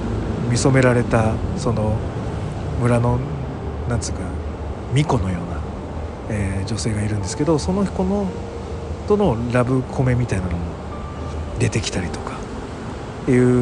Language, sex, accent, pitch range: Japanese, male, native, 100-145 Hz